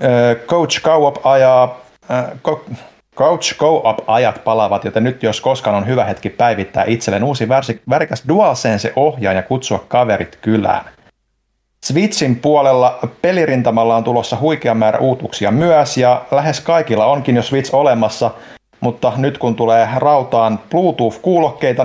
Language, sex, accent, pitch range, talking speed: Finnish, male, native, 110-135 Hz, 125 wpm